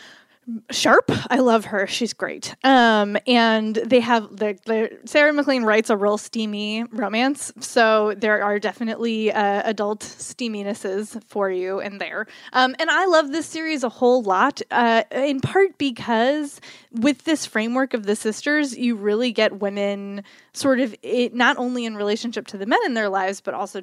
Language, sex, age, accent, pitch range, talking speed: English, female, 20-39, American, 205-255 Hz, 170 wpm